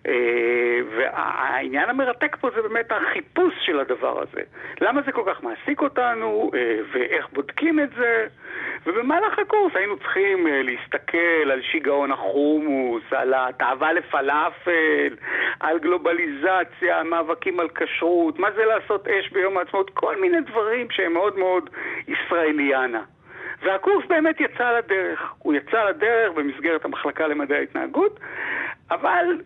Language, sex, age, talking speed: Hebrew, male, 60-79, 120 wpm